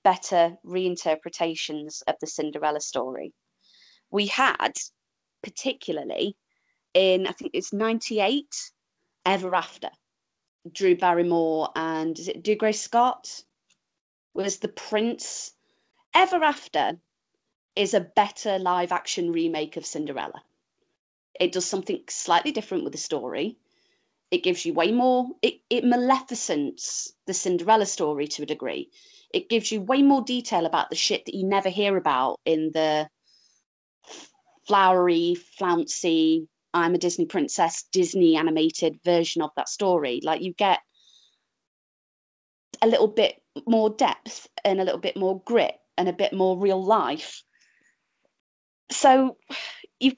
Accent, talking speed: British, 130 wpm